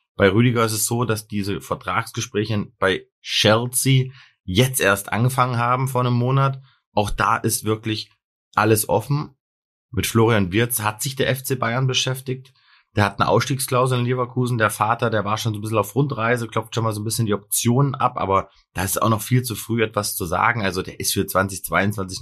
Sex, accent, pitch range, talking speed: male, German, 105-125 Hz, 195 wpm